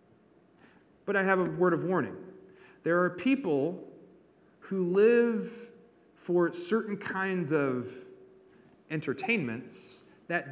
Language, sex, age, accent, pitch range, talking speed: English, male, 30-49, American, 130-180 Hz, 105 wpm